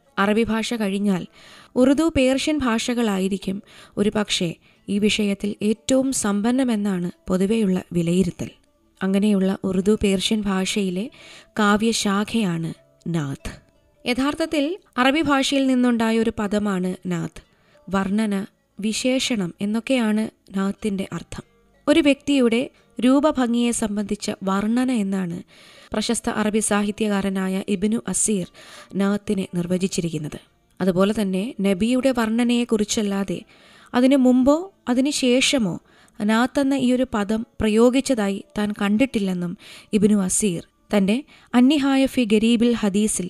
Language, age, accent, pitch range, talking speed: Malayalam, 20-39, native, 195-245 Hz, 95 wpm